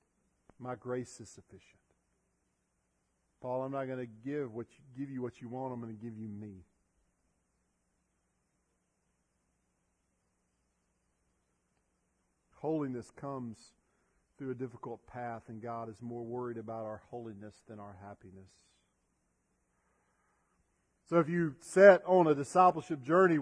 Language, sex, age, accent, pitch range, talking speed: English, male, 50-69, American, 110-145 Hz, 115 wpm